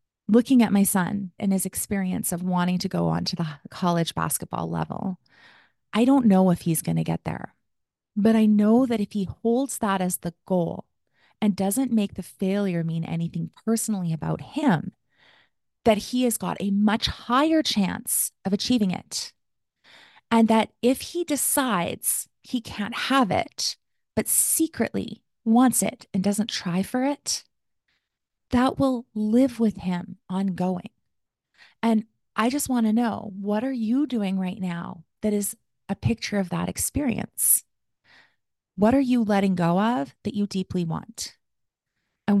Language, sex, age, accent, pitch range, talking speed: English, female, 30-49, American, 185-230 Hz, 160 wpm